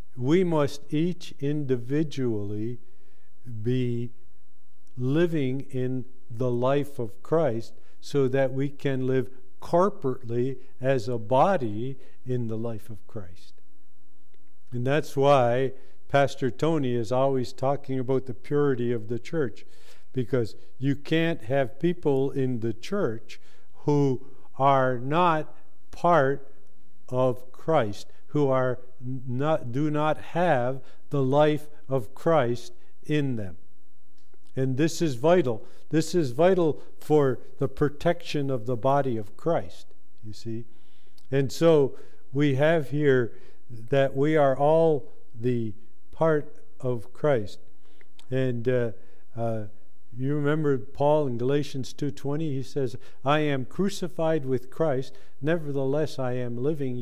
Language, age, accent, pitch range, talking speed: English, 50-69, American, 120-150 Hz, 120 wpm